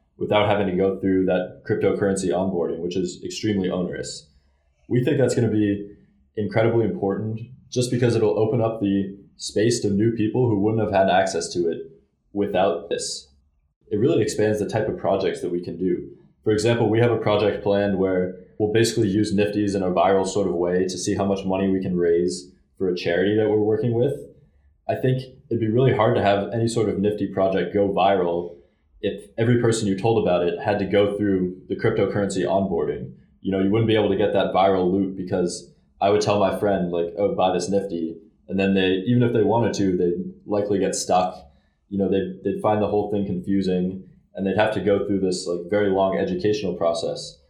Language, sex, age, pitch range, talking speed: English, male, 20-39, 90-105 Hz, 210 wpm